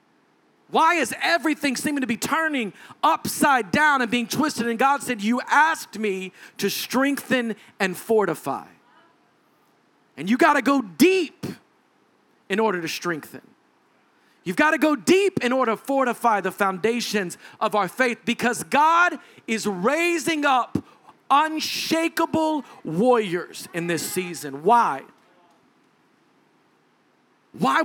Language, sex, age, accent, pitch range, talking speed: English, male, 40-59, American, 195-280 Hz, 125 wpm